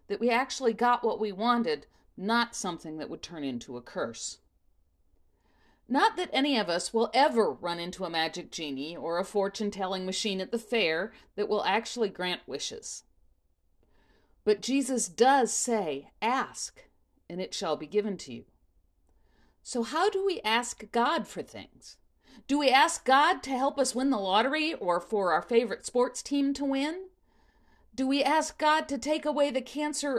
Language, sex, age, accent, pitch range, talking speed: English, female, 50-69, American, 165-265 Hz, 175 wpm